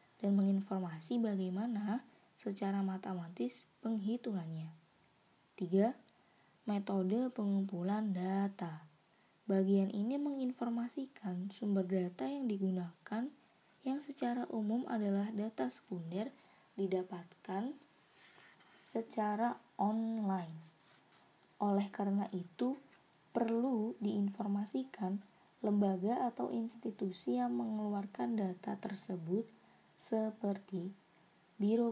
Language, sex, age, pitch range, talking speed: Indonesian, female, 20-39, 185-225 Hz, 75 wpm